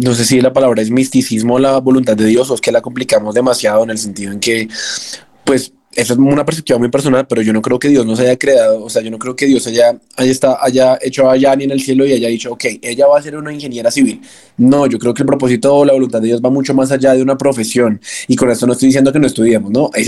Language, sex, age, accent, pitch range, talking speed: Spanish, male, 20-39, Colombian, 125-145 Hz, 285 wpm